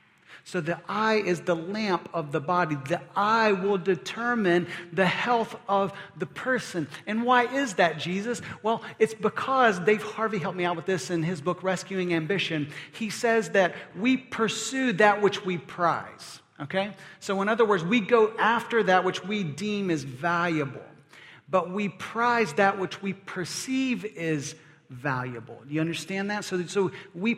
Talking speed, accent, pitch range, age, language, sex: 170 wpm, American, 170-210 Hz, 40-59, English, male